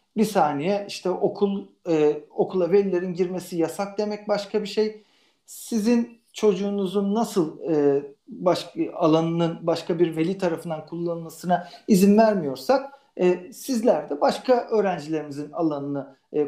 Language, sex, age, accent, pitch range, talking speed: Turkish, male, 50-69, native, 160-205 Hz, 120 wpm